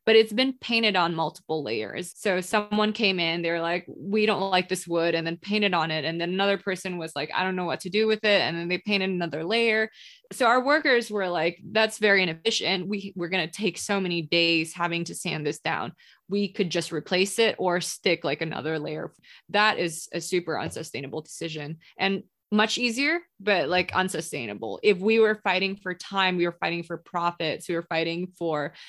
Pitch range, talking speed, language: 165-200 Hz, 210 wpm, English